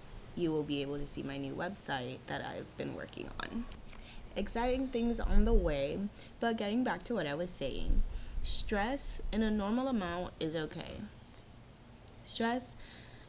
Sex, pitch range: female, 140-210 Hz